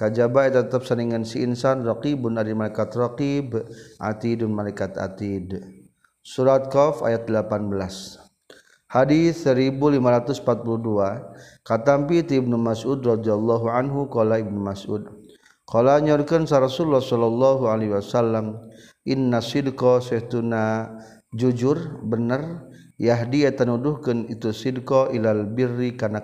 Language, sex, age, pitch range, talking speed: Indonesian, male, 40-59, 110-135 Hz, 105 wpm